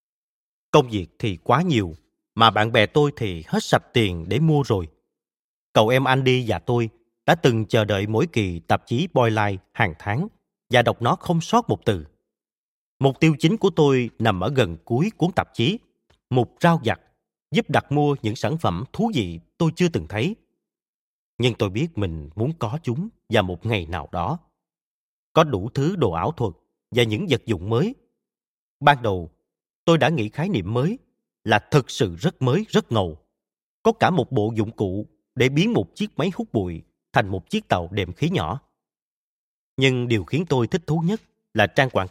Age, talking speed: 30-49, 190 wpm